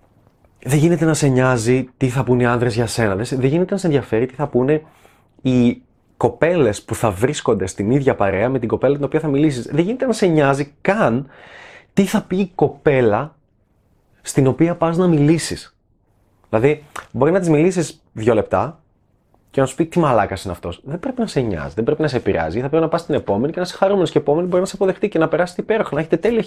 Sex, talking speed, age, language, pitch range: male, 220 wpm, 20-39, Greek, 110-170 Hz